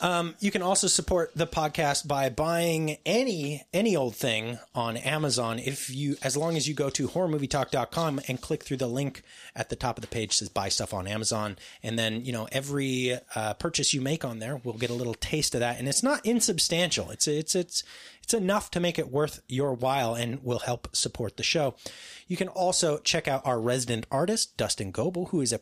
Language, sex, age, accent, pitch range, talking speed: English, male, 30-49, American, 115-160 Hz, 220 wpm